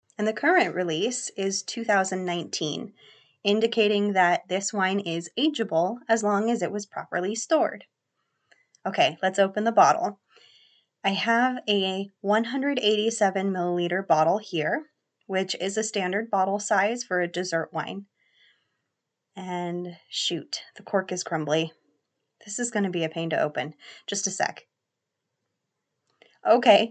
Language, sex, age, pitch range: English, female, 20-39, 175-225 Hz